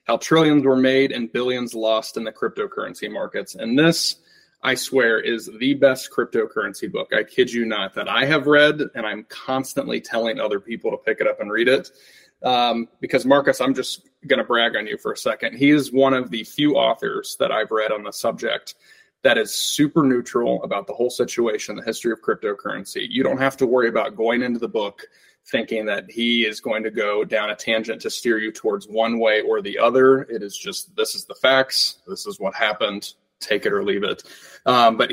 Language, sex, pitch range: English, male, 110-140 Hz